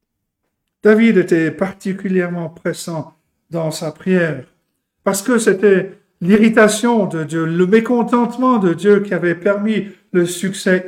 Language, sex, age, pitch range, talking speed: French, male, 50-69, 155-205 Hz, 120 wpm